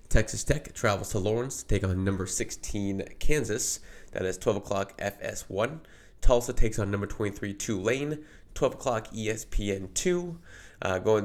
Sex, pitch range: male, 95-120 Hz